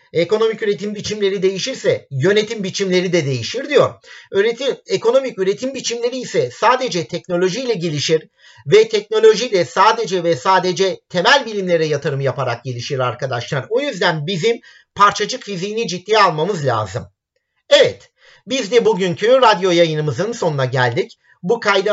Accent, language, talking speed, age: native, Turkish, 125 wpm, 50-69